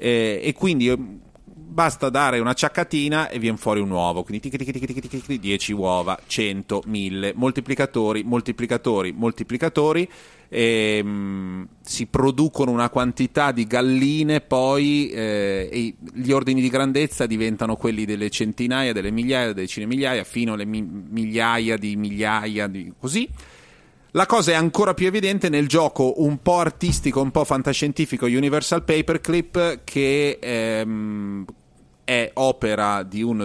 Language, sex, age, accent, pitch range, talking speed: Italian, male, 30-49, native, 105-135 Hz, 125 wpm